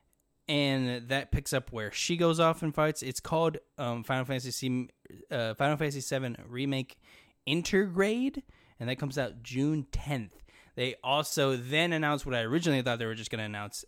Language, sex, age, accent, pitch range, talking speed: English, male, 10-29, American, 115-145 Hz, 175 wpm